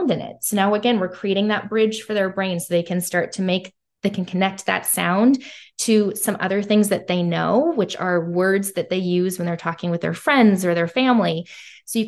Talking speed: 230 wpm